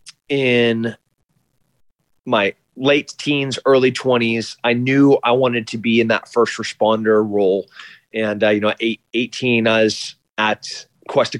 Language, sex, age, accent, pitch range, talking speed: English, male, 30-49, American, 110-125 Hz, 140 wpm